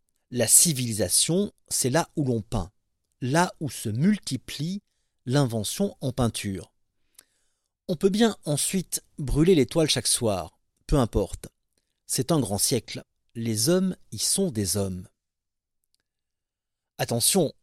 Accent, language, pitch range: French, French, 105-170 Hz